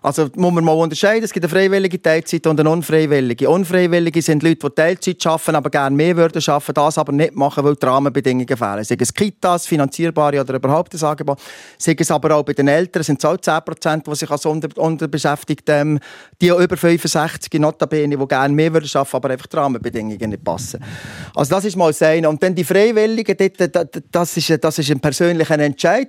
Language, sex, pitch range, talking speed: German, male, 145-175 Hz, 195 wpm